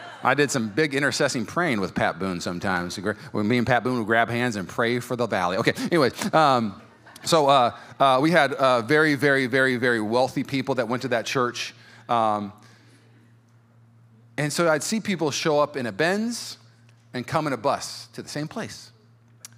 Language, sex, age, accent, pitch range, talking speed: English, male, 30-49, American, 115-135 Hz, 190 wpm